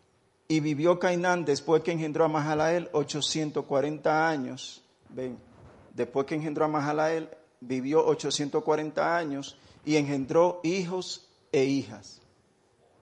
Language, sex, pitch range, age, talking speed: English, male, 130-160 Hz, 50-69, 110 wpm